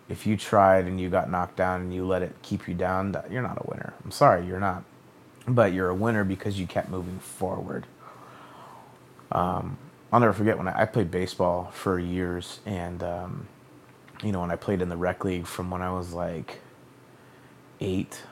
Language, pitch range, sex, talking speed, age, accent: English, 90-105 Hz, male, 195 wpm, 30-49, American